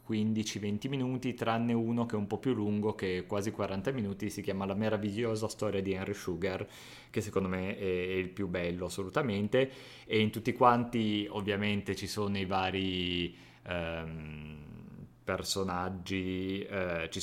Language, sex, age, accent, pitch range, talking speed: Italian, male, 30-49, native, 95-105 Hz, 155 wpm